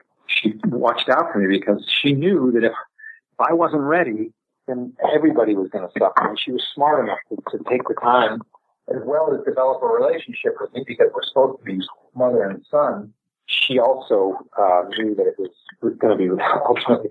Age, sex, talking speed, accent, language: 50-69, male, 200 wpm, American, English